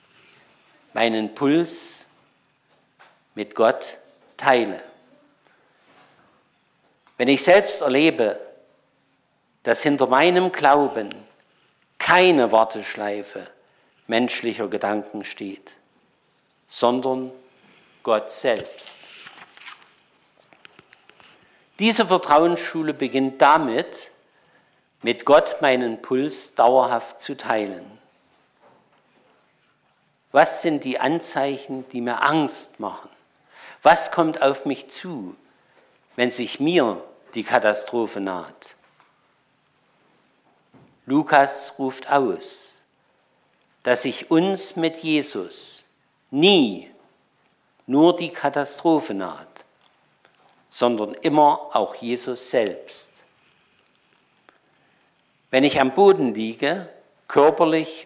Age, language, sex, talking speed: 50-69, German, male, 80 wpm